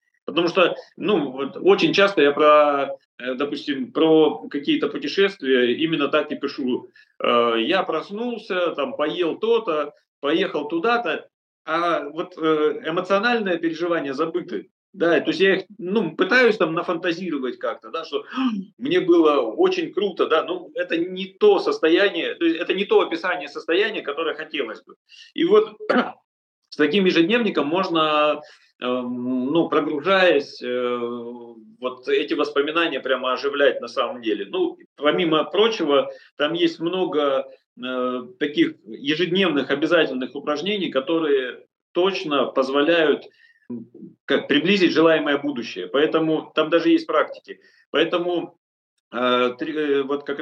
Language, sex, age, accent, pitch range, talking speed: Russian, male, 40-59, native, 145-235 Hz, 115 wpm